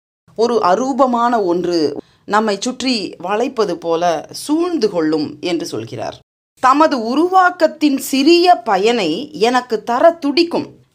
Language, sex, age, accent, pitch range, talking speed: English, female, 30-49, Indian, 220-320 Hz, 100 wpm